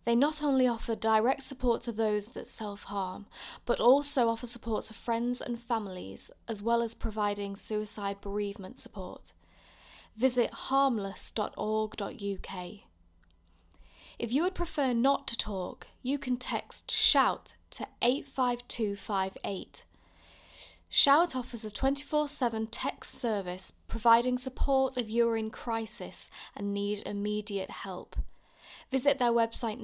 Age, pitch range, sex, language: 10-29, 200-250 Hz, female, English